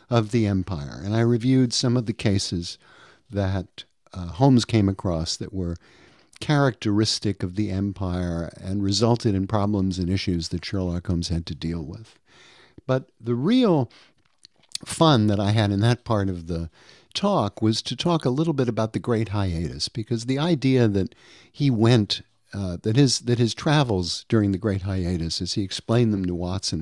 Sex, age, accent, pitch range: male, 50-69, American, 95-125 Hz